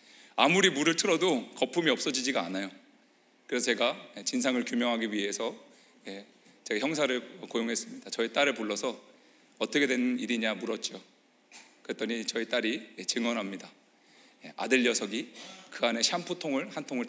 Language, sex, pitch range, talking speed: English, male, 120-195 Hz, 115 wpm